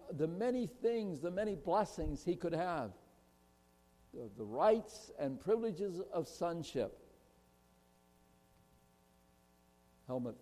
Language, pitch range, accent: English, 110-185 Hz, American